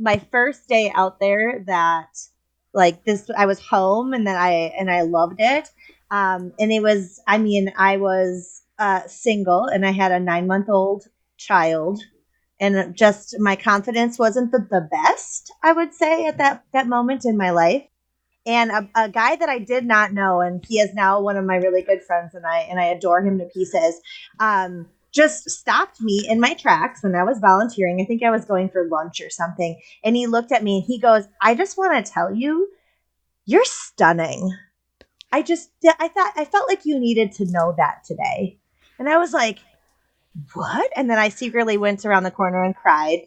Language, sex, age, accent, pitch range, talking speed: English, female, 30-49, American, 185-240 Hz, 200 wpm